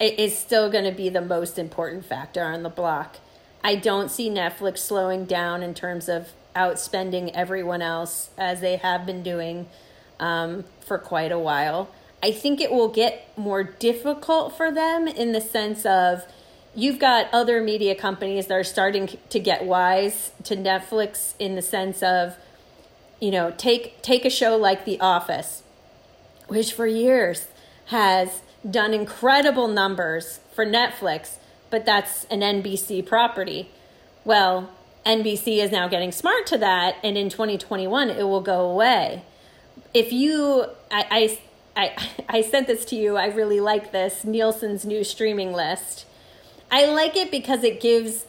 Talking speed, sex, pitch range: 160 wpm, female, 185-230 Hz